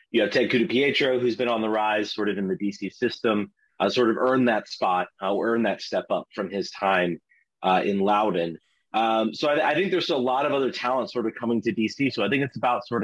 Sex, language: male, English